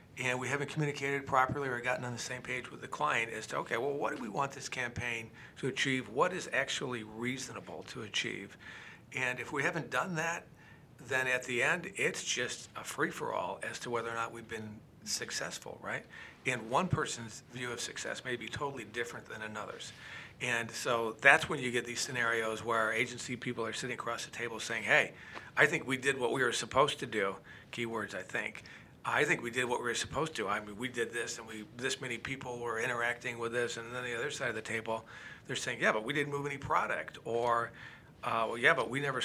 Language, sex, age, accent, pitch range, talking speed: English, male, 40-59, American, 115-130 Hz, 220 wpm